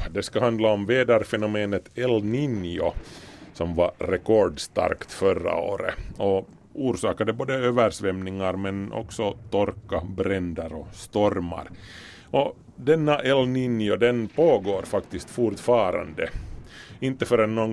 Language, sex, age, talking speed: Swedish, male, 30-49, 110 wpm